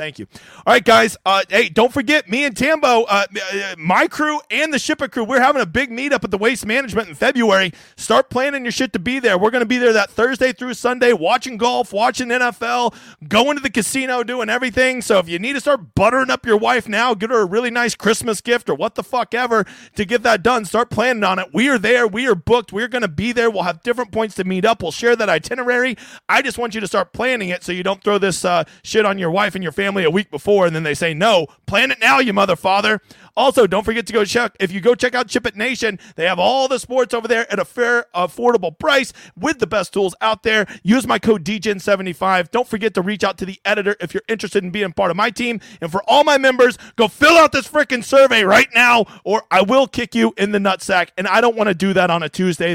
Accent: American